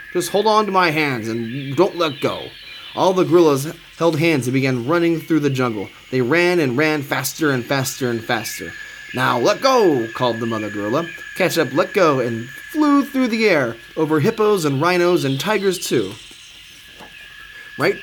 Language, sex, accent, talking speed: English, male, American, 175 wpm